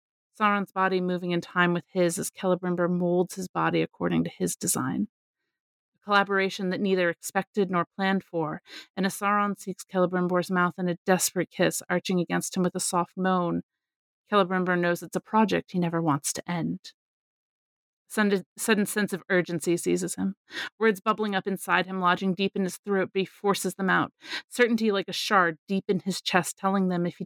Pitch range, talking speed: 170-195 Hz, 185 wpm